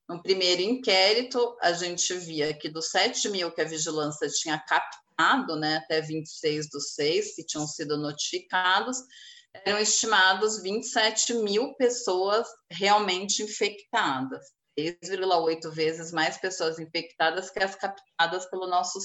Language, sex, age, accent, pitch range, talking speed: Portuguese, female, 30-49, Brazilian, 160-215 Hz, 130 wpm